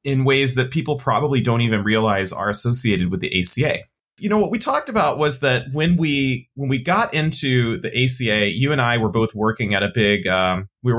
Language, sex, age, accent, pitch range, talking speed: English, male, 30-49, American, 110-135 Hz, 225 wpm